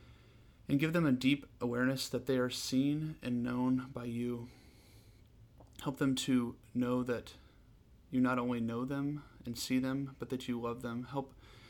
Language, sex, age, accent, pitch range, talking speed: English, male, 30-49, American, 120-130 Hz, 170 wpm